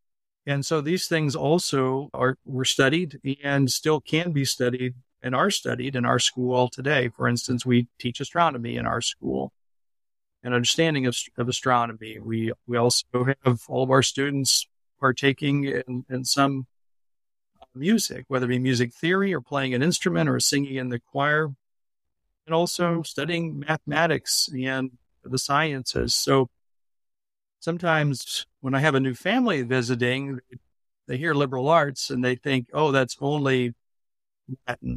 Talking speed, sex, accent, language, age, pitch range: 150 wpm, male, American, English, 40-59, 120-145 Hz